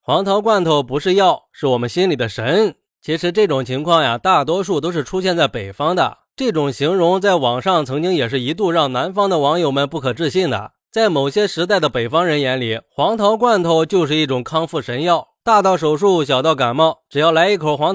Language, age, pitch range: Chinese, 20-39, 140-190 Hz